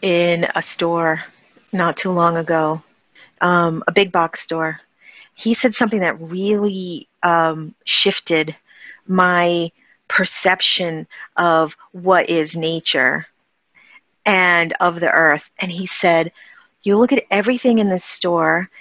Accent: American